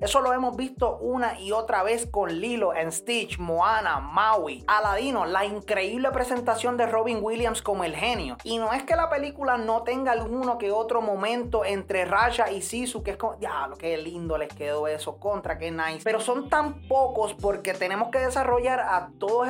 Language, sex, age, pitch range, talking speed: Spanish, male, 20-39, 200-245 Hz, 195 wpm